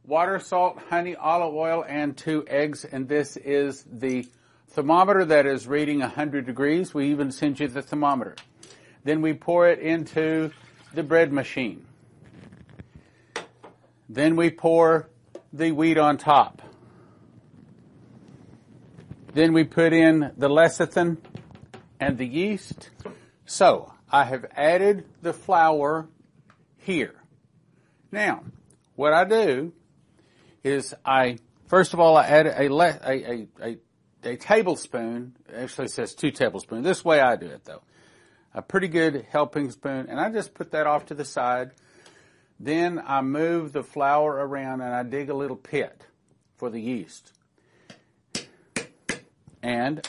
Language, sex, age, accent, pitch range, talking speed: English, male, 50-69, American, 130-165 Hz, 135 wpm